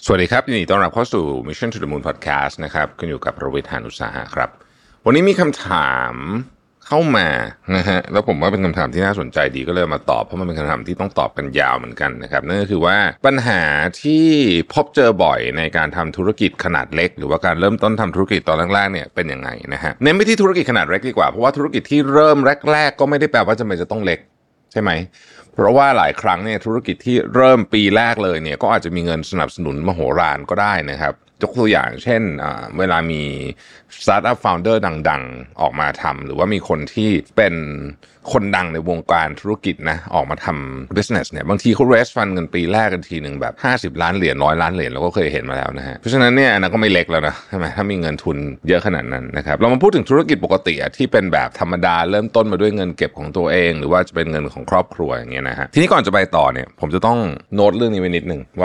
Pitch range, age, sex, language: 80-115 Hz, 30-49, male, Thai